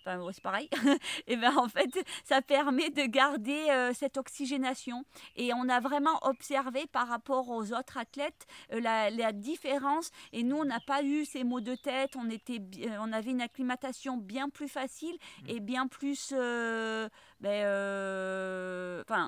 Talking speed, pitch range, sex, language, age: 165 wpm, 225-270 Hz, female, French, 30-49